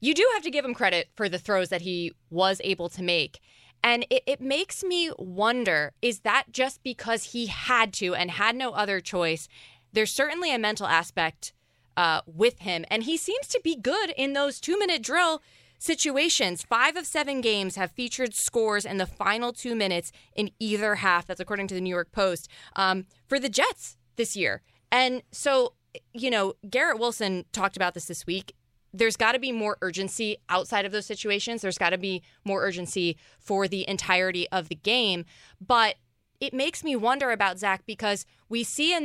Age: 20-39